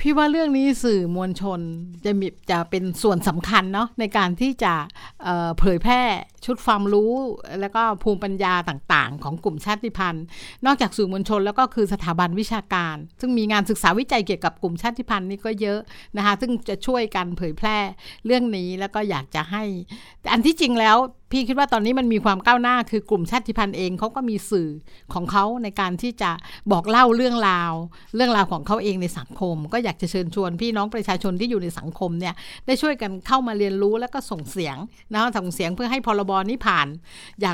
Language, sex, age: Thai, female, 60-79